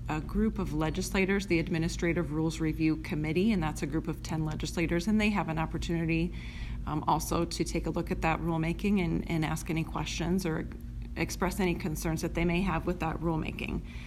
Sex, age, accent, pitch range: female, 30-49, American, 160-185 Hz